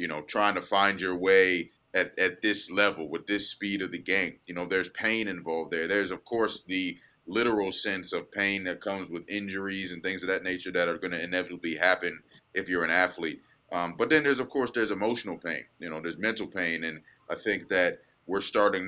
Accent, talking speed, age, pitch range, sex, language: American, 225 wpm, 30-49, 85-100 Hz, male, English